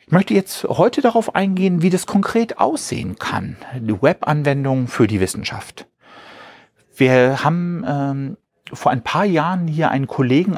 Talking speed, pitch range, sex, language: 145 wpm, 120-160 Hz, male, German